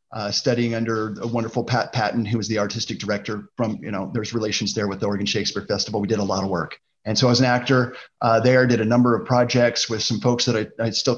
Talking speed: 265 wpm